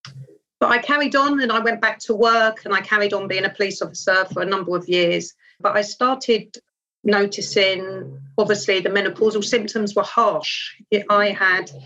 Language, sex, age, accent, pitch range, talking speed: English, female, 40-59, British, 175-215 Hz, 175 wpm